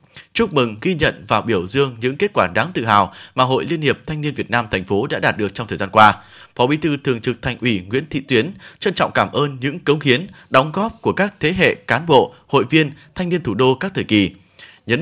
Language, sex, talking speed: Vietnamese, male, 260 wpm